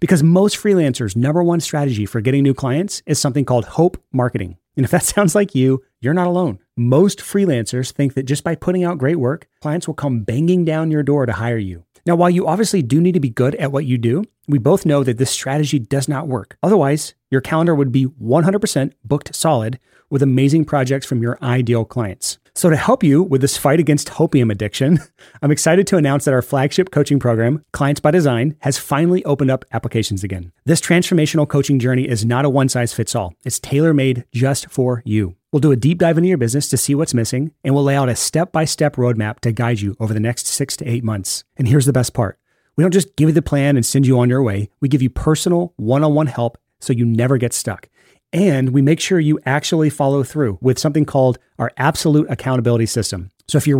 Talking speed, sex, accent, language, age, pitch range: 220 wpm, male, American, English, 30-49, 125-155 Hz